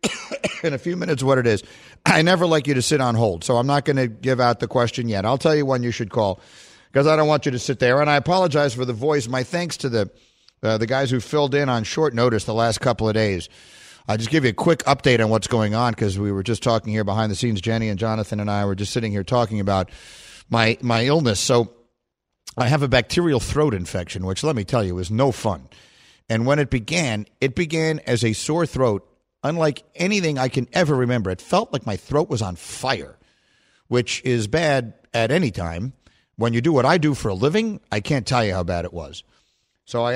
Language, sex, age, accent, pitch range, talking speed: English, male, 50-69, American, 105-135 Hz, 240 wpm